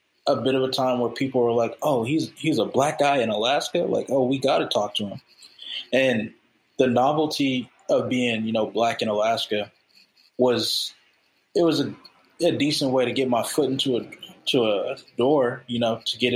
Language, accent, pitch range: English, American, 115-135 Hz